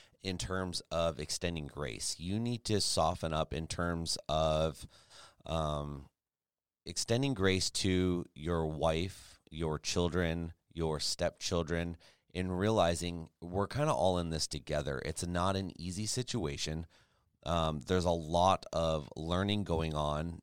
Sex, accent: male, American